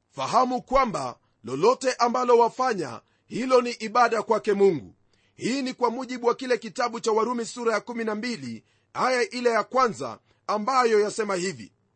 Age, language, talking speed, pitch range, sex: 40-59, Swahili, 145 wpm, 220-255 Hz, male